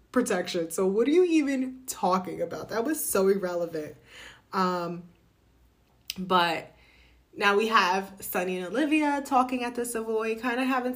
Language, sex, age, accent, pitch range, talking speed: English, female, 20-39, American, 185-255 Hz, 150 wpm